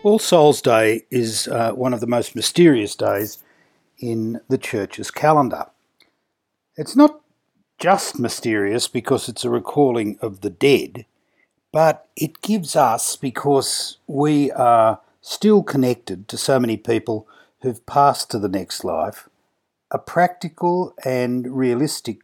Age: 60-79